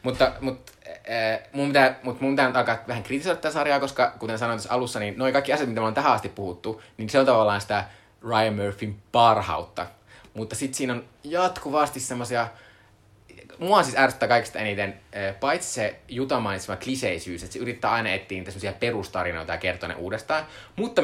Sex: male